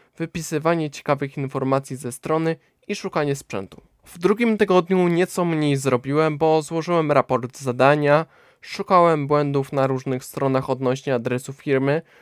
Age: 20-39